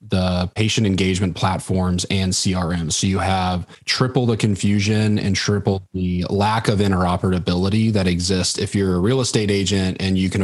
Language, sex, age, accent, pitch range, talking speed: English, male, 30-49, American, 90-105 Hz, 165 wpm